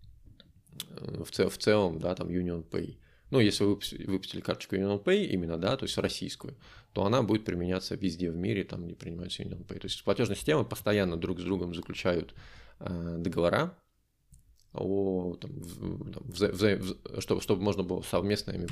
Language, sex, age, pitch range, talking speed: Russian, male, 20-39, 90-105 Hz, 180 wpm